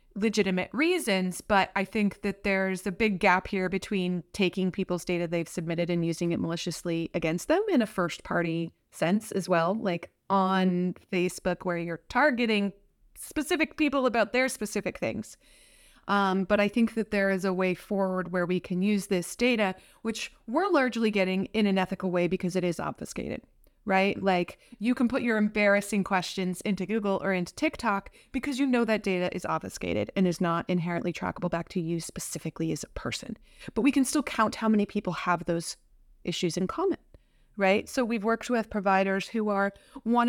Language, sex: English, female